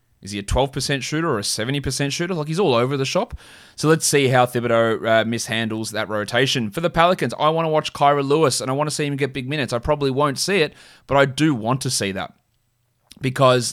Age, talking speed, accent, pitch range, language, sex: 20-39, 240 wpm, Australian, 110-135 Hz, English, male